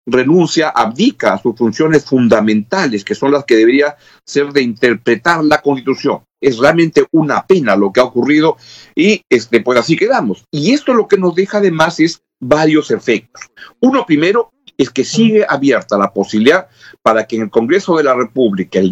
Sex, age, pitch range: male, 50-69, 135-195 Hz